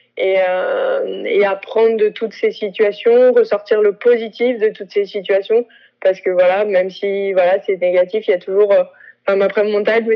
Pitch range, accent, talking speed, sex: 195-235 Hz, French, 175 wpm, female